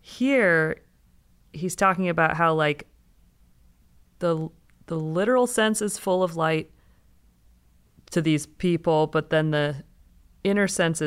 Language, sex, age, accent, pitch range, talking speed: English, female, 30-49, American, 145-180 Hz, 120 wpm